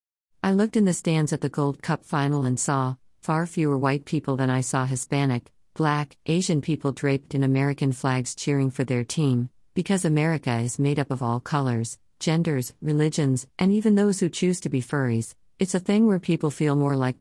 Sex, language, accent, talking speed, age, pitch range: female, English, American, 200 wpm, 50-69, 130-155 Hz